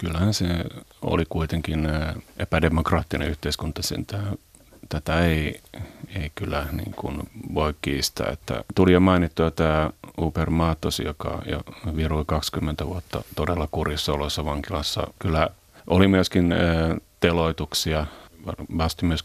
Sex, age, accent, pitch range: male, 30-49, native, 75-85 Hz